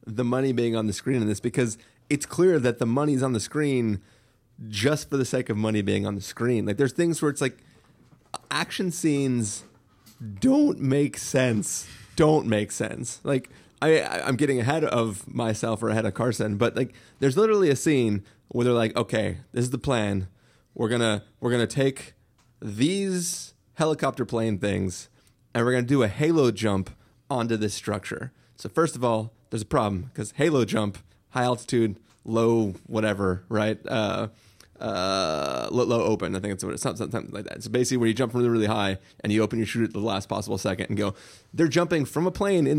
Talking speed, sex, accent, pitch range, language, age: 200 wpm, male, American, 105-135 Hz, English, 30-49